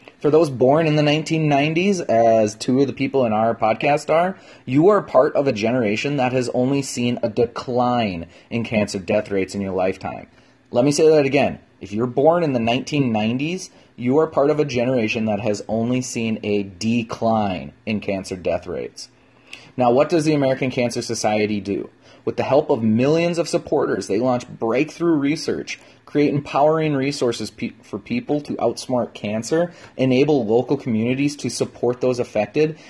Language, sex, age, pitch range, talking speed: English, male, 30-49, 110-145 Hz, 175 wpm